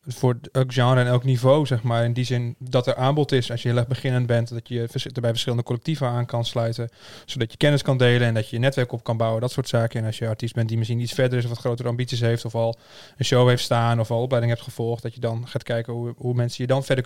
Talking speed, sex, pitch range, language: 290 wpm, male, 115-130 Hz, English